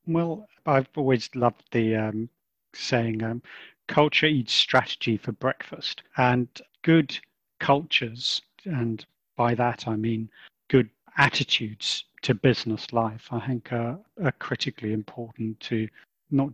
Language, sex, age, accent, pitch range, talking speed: English, male, 40-59, British, 120-145 Hz, 125 wpm